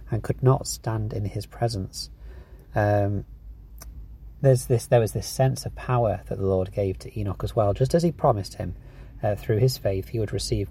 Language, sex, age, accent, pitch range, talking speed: English, male, 30-49, British, 100-120 Hz, 200 wpm